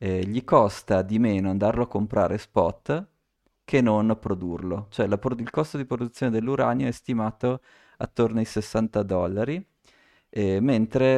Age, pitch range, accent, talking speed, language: 20-39, 95-115 Hz, native, 140 wpm, Italian